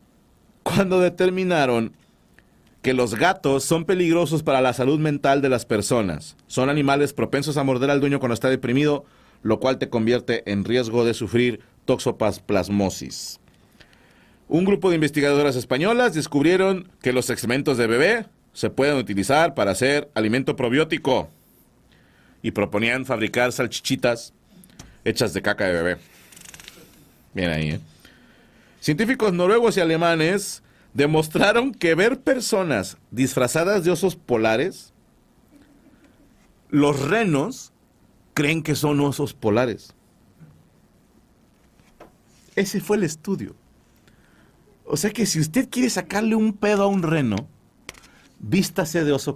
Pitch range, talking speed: 120-170 Hz, 125 wpm